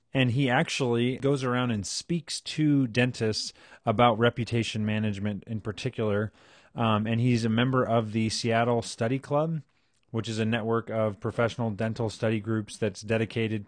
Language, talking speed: English, 155 wpm